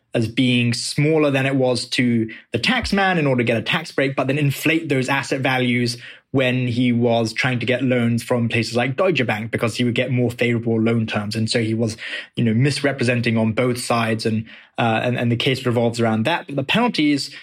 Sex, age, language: male, 20-39, English